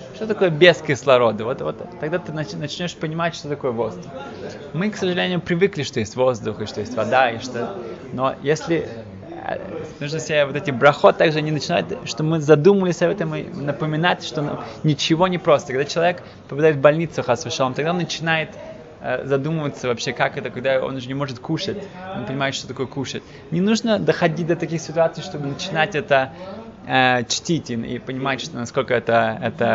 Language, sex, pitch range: Russian, male, 130-170 Hz